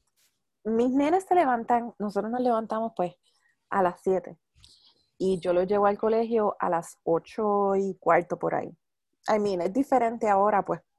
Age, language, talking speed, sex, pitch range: 20-39, Spanish, 175 wpm, female, 180-240 Hz